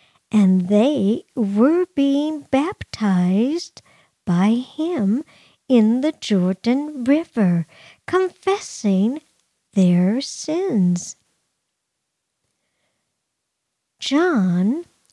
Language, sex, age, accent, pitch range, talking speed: English, male, 50-69, American, 205-290 Hz, 60 wpm